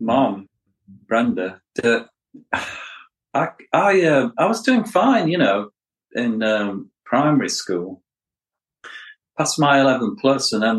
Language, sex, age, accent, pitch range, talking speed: English, male, 40-59, British, 95-110 Hz, 115 wpm